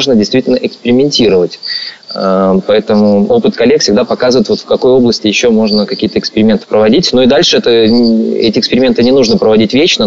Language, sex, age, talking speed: Russian, male, 20-39, 150 wpm